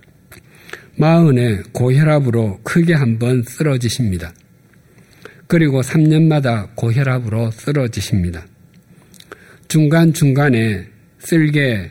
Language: Korean